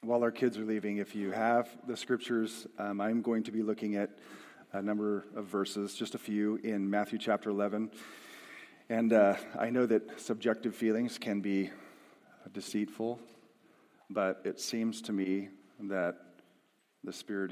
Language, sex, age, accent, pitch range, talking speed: English, male, 40-59, American, 100-120 Hz, 160 wpm